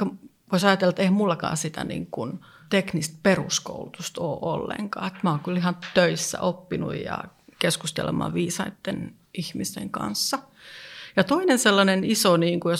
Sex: female